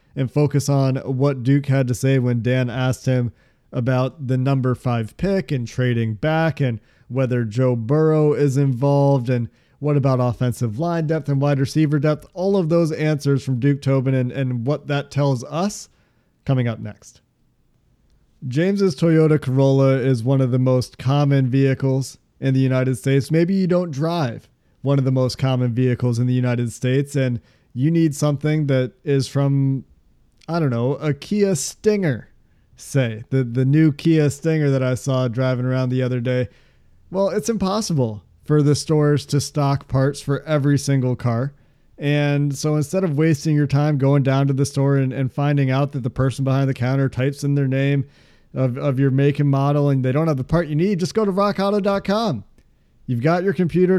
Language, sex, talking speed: English, male, 185 wpm